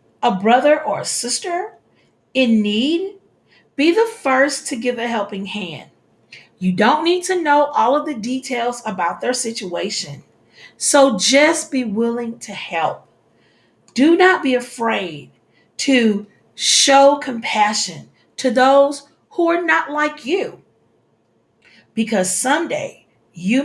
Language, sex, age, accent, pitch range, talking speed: English, female, 40-59, American, 210-280 Hz, 125 wpm